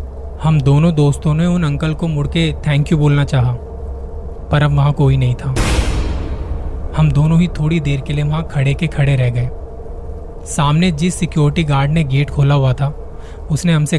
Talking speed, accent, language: 185 wpm, native, Hindi